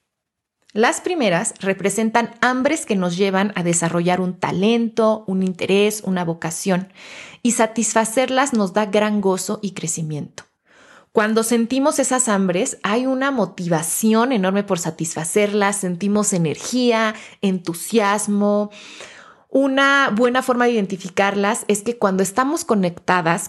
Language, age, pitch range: Spanish, 20-39, 185-235 Hz